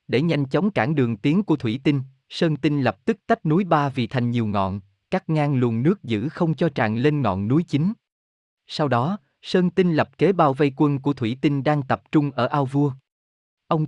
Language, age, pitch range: Vietnamese, 20-39, 120-165 Hz